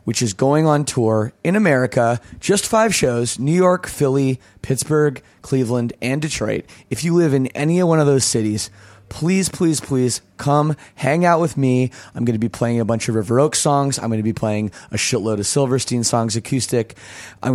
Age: 30-49